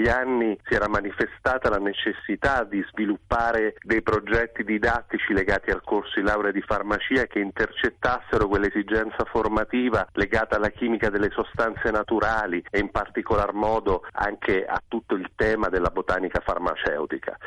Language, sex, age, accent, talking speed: Italian, male, 40-59, native, 135 wpm